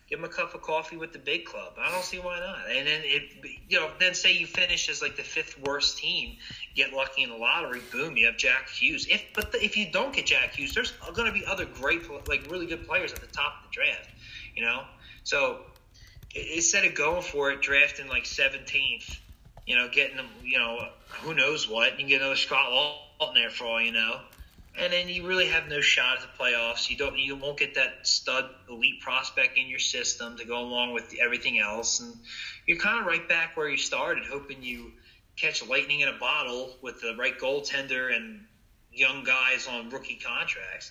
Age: 20-39